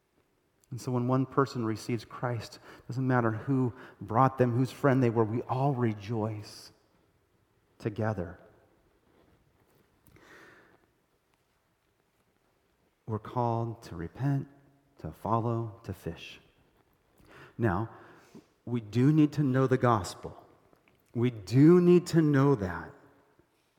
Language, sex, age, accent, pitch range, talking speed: English, male, 30-49, American, 110-140 Hz, 110 wpm